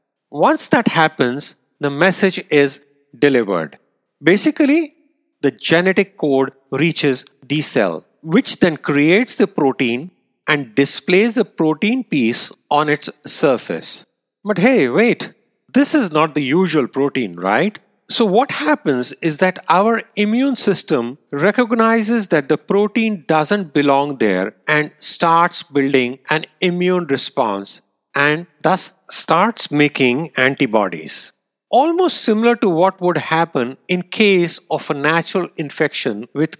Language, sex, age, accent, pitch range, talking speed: English, male, 40-59, Indian, 140-210 Hz, 125 wpm